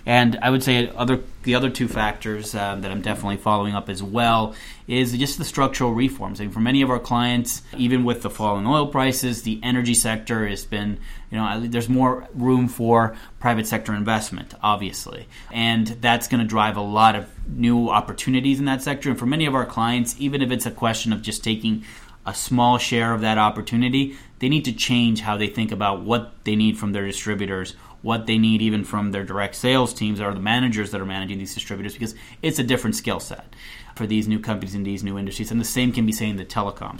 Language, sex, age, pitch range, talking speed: English, male, 30-49, 105-125 Hz, 225 wpm